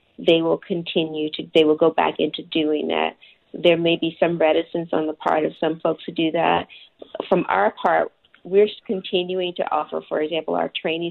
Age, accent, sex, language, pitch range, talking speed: 40-59, American, female, English, 150-165 Hz, 195 wpm